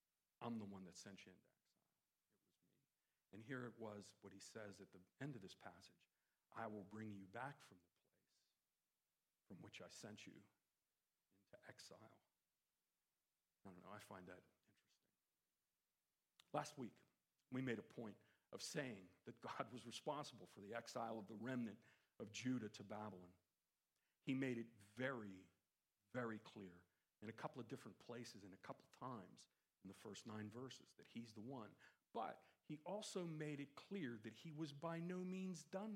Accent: American